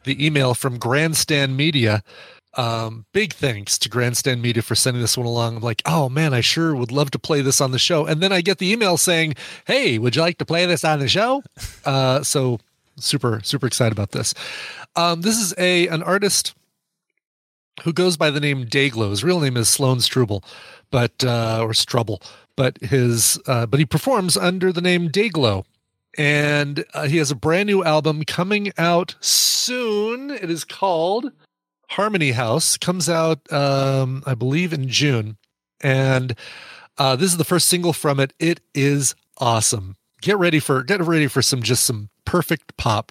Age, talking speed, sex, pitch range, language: 30-49, 185 wpm, male, 120-170 Hz, English